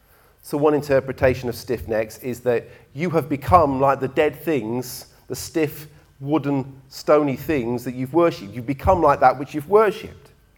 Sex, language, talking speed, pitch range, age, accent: male, English, 170 wpm, 110-145 Hz, 40-59, British